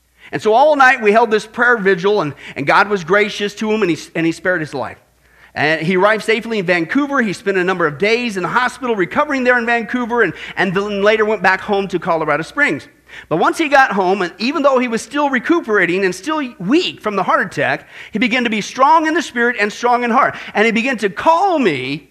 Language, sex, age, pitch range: English, male, 40-59, 185-270 Hz